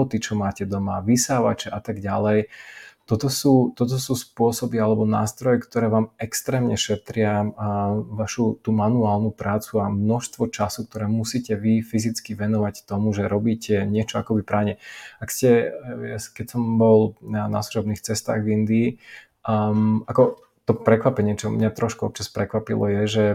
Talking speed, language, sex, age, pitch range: 145 wpm, Slovak, male, 20-39, 105-115 Hz